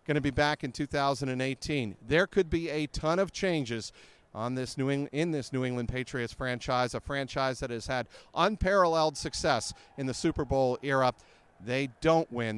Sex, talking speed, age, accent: male, 180 wpm, 40-59, American